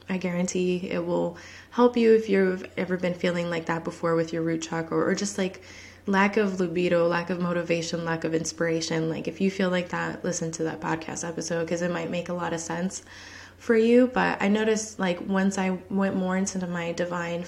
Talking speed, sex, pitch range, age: 215 wpm, female, 170-195 Hz, 20-39